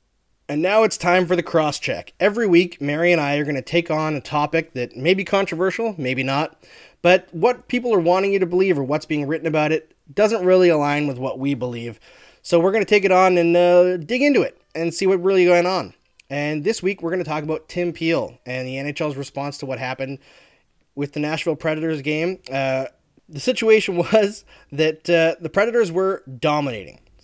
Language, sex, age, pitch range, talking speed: English, male, 20-39, 135-180 Hz, 210 wpm